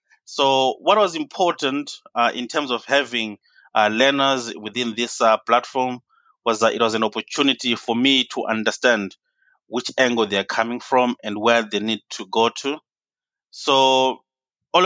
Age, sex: 30-49, male